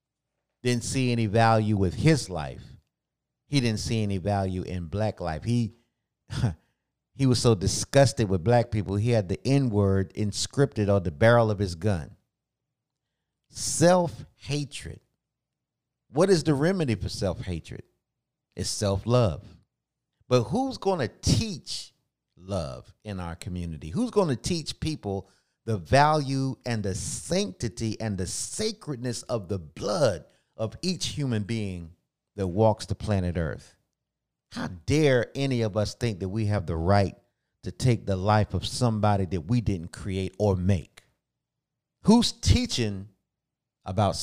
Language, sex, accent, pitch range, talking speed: English, male, American, 100-135 Hz, 140 wpm